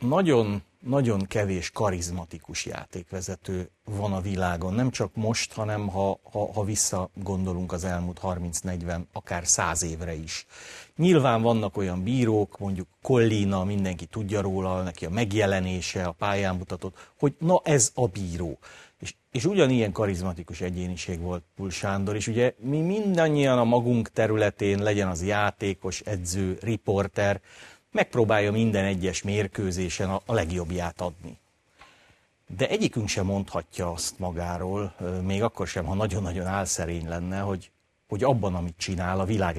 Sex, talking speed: male, 135 wpm